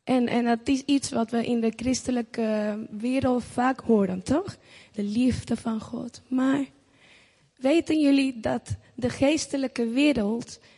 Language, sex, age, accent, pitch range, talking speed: Dutch, female, 10-29, Dutch, 230-280 Hz, 140 wpm